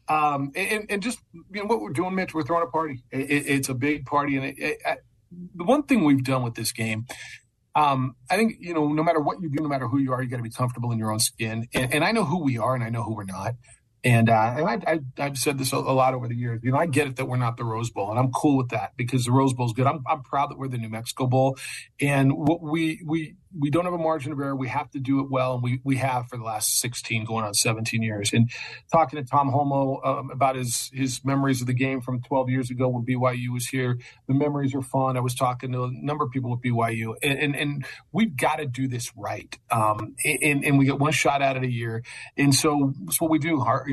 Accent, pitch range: American, 125-145 Hz